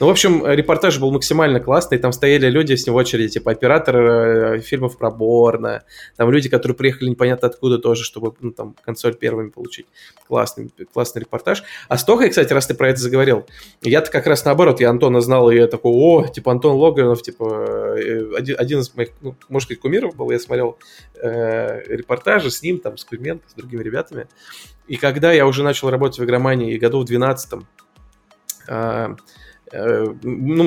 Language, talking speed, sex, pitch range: Russian, 190 wpm, male, 120-155 Hz